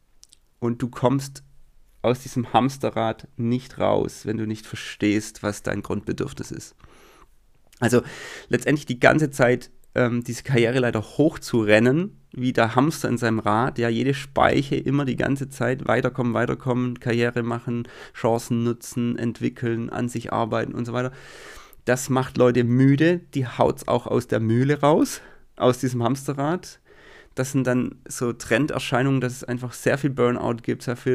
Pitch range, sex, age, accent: 120-135 Hz, male, 30-49, German